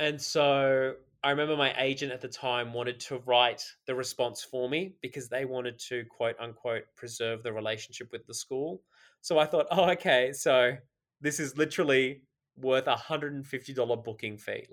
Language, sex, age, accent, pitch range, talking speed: English, male, 20-39, Australian, 120-140 Hz, 170 wpm